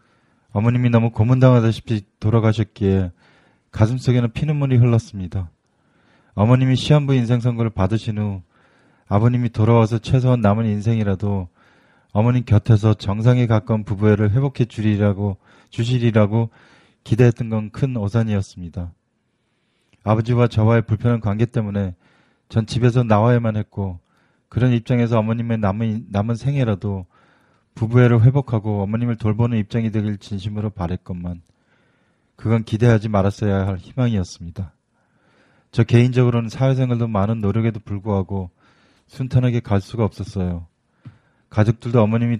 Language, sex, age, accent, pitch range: Korean, male, 20-39, native, 100-120 Hz